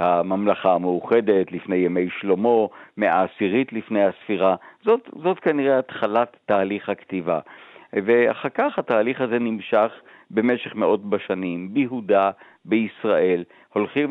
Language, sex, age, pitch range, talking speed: Hebrew, male, 60-79, 95-120 Hz, 110 wpm